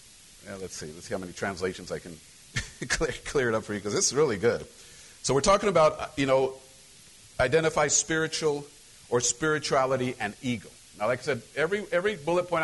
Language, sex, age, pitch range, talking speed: English, male, 50-69, 105-140 Hz, 190 wpm